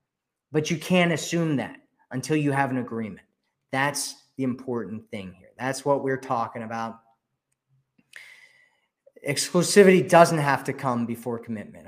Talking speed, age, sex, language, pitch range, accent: 135 wpm, 20-39, male, English, 125-155 Hz, American